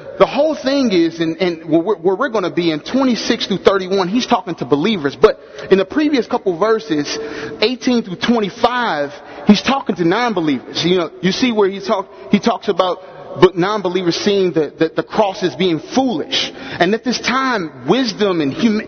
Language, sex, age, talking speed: English, male, 30-49, 190 wpm